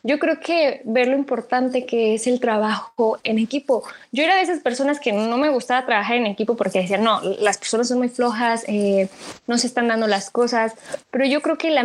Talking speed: 225 wpm